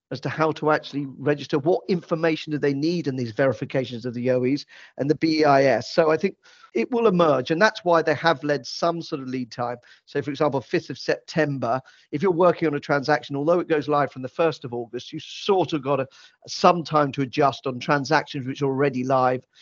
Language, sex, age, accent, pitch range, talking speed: English, male, 40-59, British, 130-165 Hz, 225 wpm